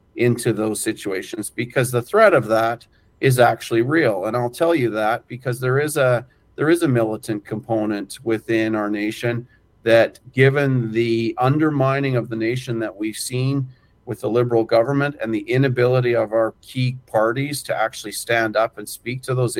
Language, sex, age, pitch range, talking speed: English, male, 40-59, 110-130 Hz, 175 wpm